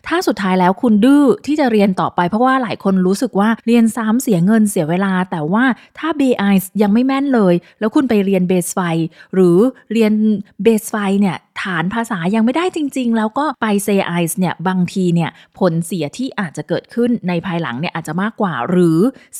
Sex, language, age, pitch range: female, Thai, 20-39, 175-230 Hz